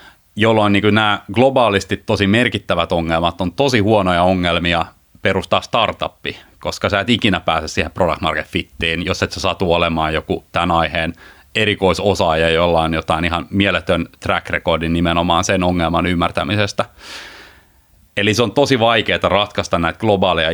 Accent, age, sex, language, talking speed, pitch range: native, 30-49, male, Finnish, 145 wpm, 85-105 Hz